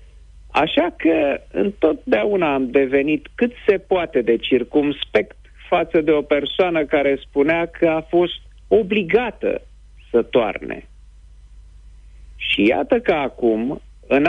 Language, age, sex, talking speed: Romanian, 50-69, male, 115 wpm